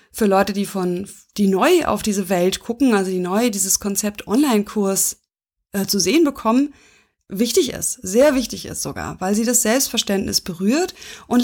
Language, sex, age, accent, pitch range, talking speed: German, female, 20-39, German, 195-245 Hz, 170 wpm